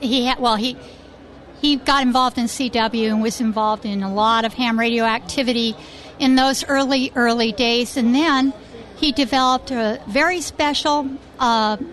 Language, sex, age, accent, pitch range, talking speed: English, female, 60-79, American, 235-285 Hz, 160 wpm